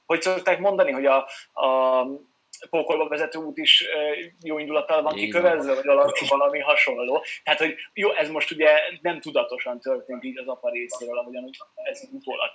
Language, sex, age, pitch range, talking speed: Hungarian, male, 30-49, 130-215 Hz, 165 wpm